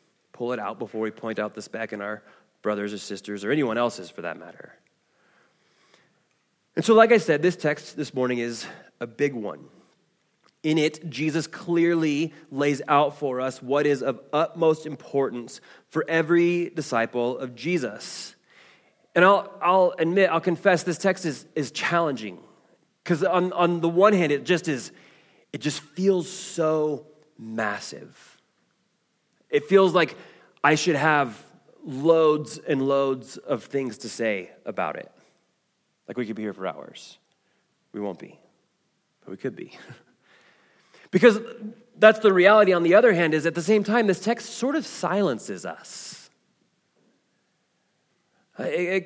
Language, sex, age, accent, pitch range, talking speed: English, male, 20-39, American, 130-180 Hz, 155 wpm